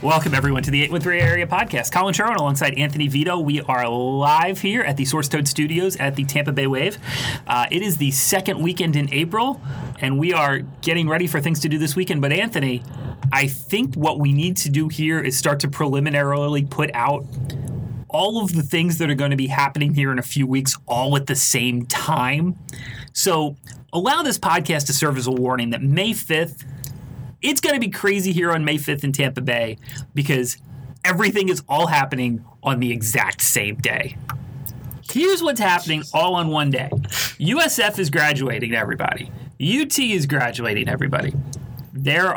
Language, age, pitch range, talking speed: English, 30-49, 135-170 Hz, 185 wpm